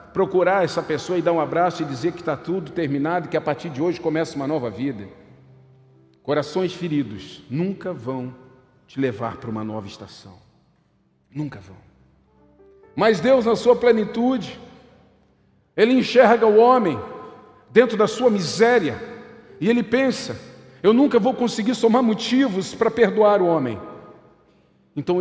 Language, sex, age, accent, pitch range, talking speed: Portuguese, male, 50-69, Brazilian, 155-240 Hz, 145 wpm